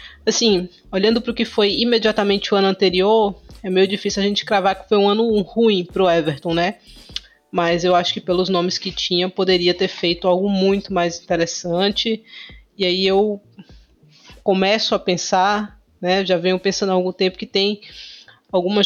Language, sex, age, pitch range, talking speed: Portuguese, female, 20-39, 185-210 Hz, 175 wpm